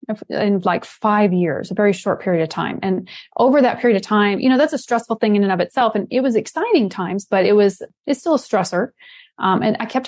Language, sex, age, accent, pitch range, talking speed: English, female, 30-49, American, 200-245 Hz, 250 wpm